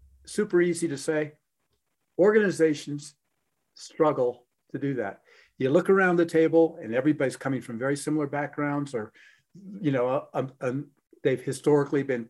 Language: English